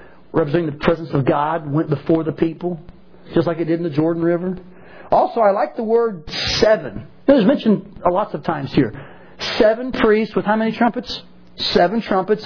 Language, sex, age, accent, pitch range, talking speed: English, male, 40-59, American, 165-205 Hz, 185 wpm